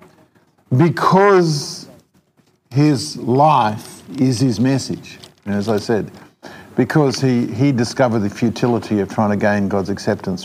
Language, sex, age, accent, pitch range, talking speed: English, male, 50-69, Australian, 120-160 Hz, 125 wpm